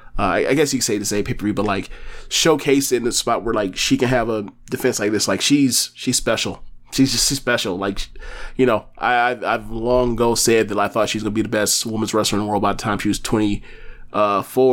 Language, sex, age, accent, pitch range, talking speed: English, male, 20-39, American, 105-125 Hz, 255 wpm